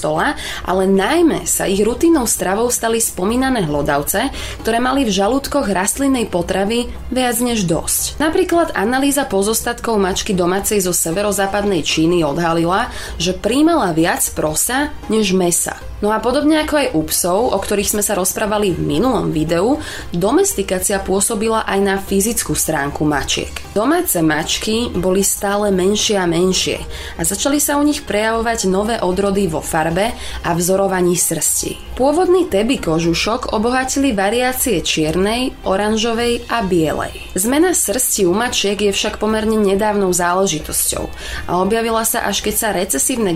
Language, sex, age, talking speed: Slovak, female, 20-39, 140 wpm